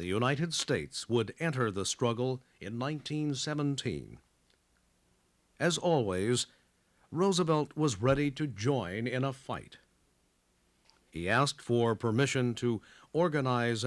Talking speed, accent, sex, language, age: 110 wpm, American, male, English, 50-69